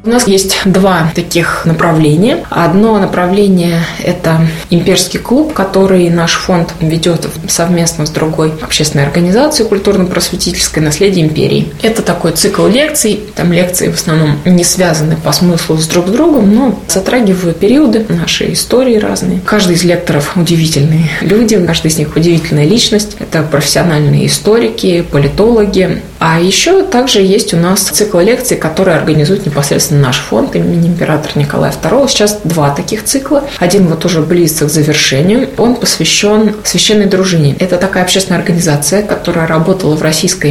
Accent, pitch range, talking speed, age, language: native, 160-205 Hz, 145 wpm, 20-39, Russian